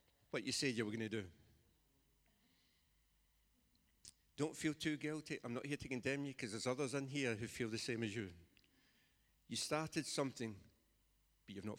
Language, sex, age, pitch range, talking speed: English, male, 60-79, 100-120 Hz, 175 wpm